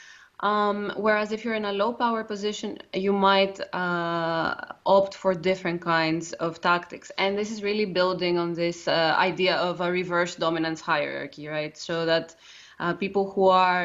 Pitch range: 170-200 Hz